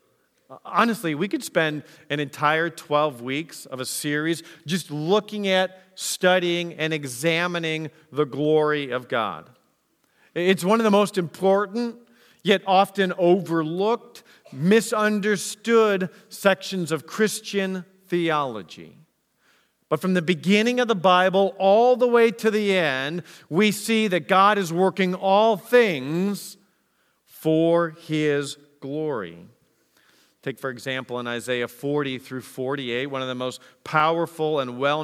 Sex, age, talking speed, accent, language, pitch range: male, 50-69, 125 wpm, American, English, 150-205 Hz